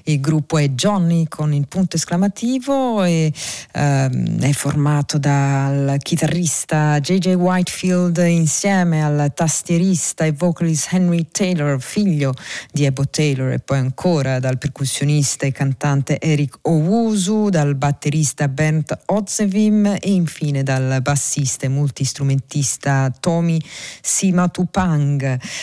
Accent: native